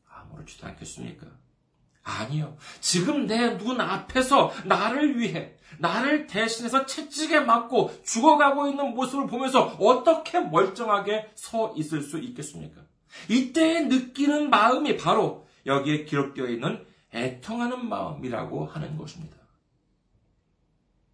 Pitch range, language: 160-265 Hz, Korean